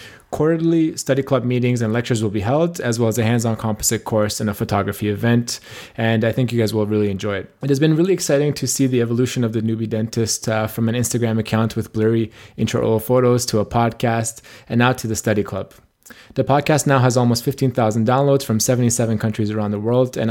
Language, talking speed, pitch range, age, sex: English, 220 wpm, 110-130 Hz, 20-39, male